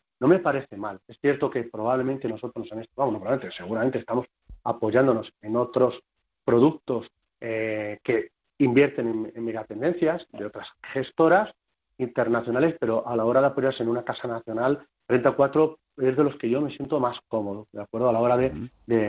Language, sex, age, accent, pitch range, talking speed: Spanish, male, 40-59, Spanish, 115-135 Hz, 180 wpm